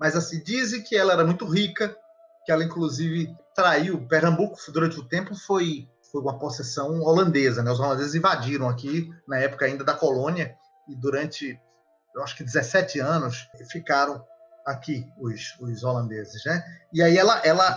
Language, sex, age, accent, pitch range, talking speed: Portuguese, male, 30-49, Brazilian, 135-195 Hz, 160 wpm